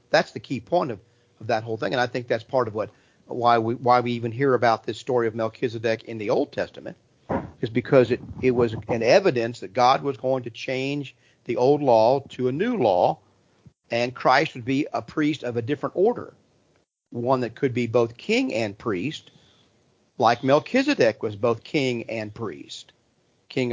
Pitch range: 110-130 Hz